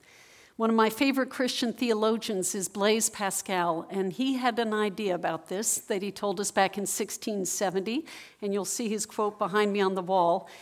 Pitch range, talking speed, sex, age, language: 195-245 Hz, 185 wpm, female, 50-69, English